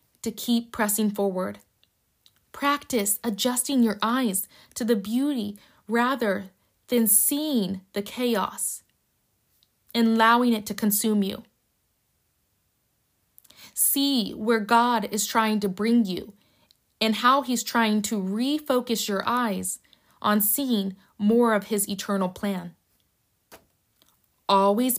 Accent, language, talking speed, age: American, English, 110 wpm, 20-39